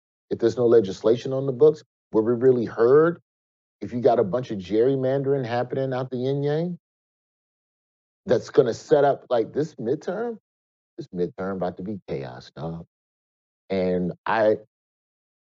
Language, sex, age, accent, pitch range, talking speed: English, male, 40-59, American, 85-125 Hz, 150 wpm